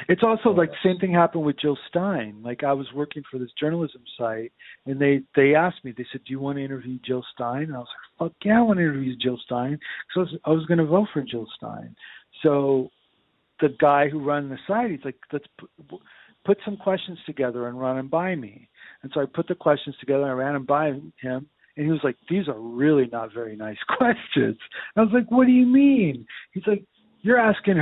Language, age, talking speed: English, 50-69, 240 wpm